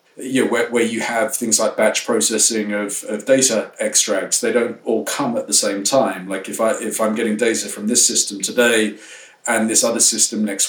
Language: English